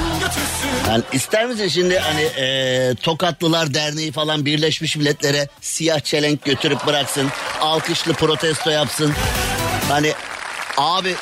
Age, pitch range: 50-69, 145-175 Hz